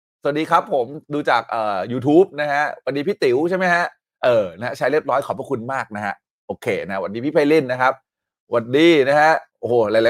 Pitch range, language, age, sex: 130-210 Hz, Thai, 30-49, male